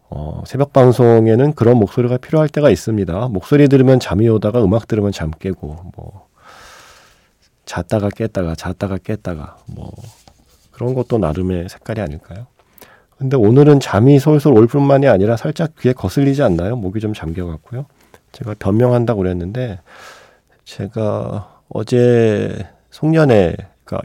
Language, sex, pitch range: Korean, male, 90-125 Hz